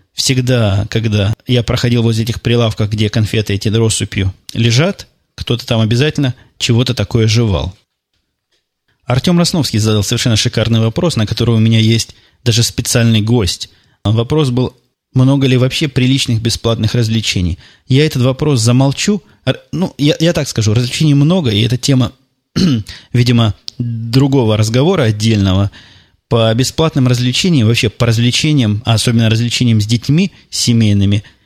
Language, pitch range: Russian, 110-125 Hz